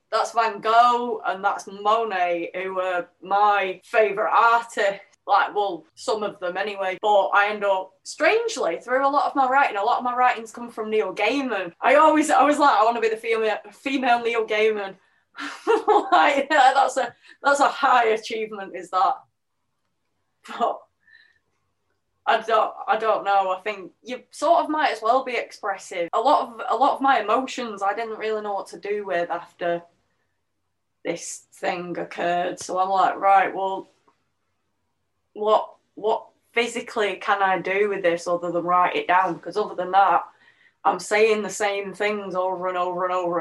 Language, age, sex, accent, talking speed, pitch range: English, 20-39, female, British, 180 wpm, 185-235 Hz